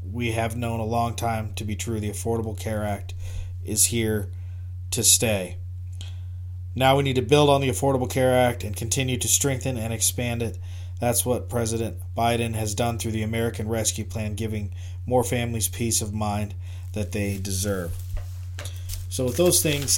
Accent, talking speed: American, 175 wpm